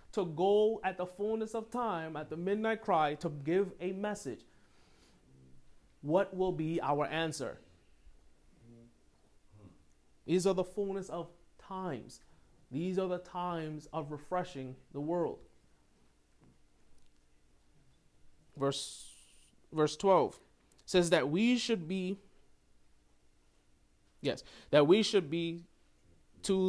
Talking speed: 110 wpm